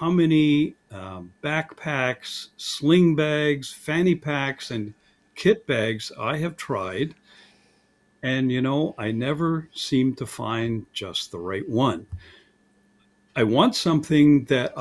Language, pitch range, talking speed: English, 110-150 Hz, 120 wpm